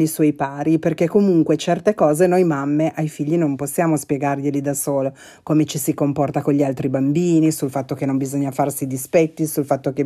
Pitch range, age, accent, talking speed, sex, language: 145-180 Hz, 30-49, native, 205 wpm, female, Italian